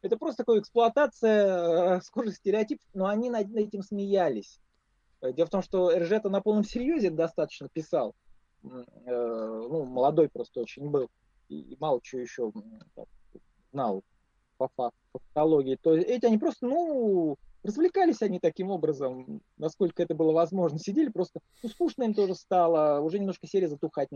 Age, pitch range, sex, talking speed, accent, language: 20-39, 130-200 Hz, male, 145 wpm, native, Russian